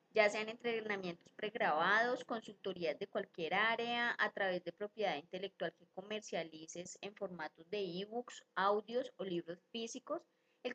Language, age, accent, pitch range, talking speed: Spanish, 20-39, Colombian, 185-240 Hz, 135 wpm